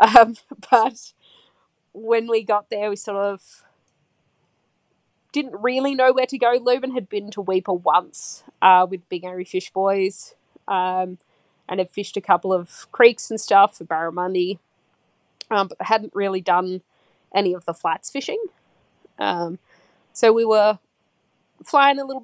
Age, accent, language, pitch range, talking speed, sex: 20-39, Australian, English, 185-230 Hz, 150 wpm, female